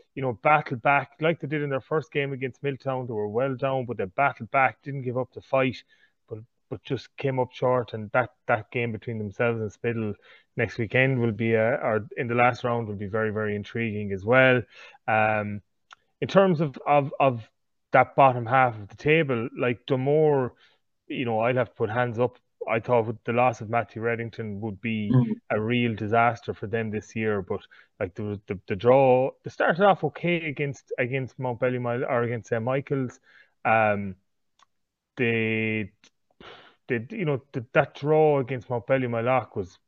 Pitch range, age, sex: 115-135 Hz, 30-49, male